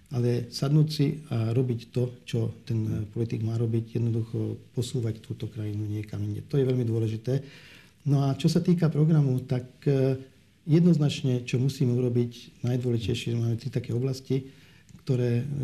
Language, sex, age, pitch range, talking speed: Slovak, male, 50-69, 115-135 Hz, 145 wpm